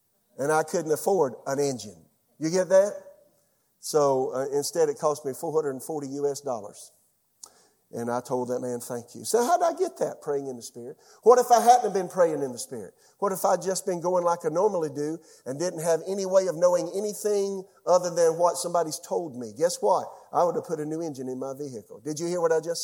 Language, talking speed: English, 225 wpm